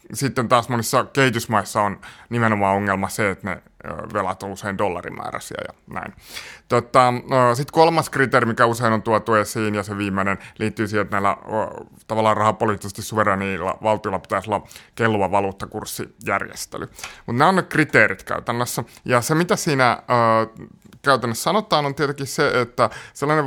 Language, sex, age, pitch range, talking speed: Finnish, male, 30-49, 110-135 Hz, 150 wpm